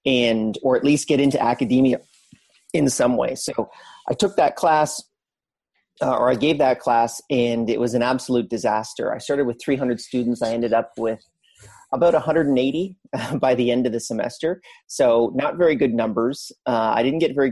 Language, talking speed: English, 190 wpm